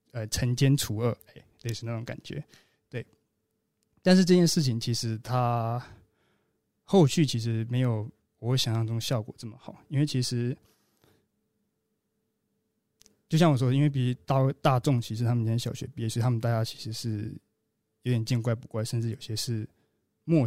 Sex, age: male, 20-39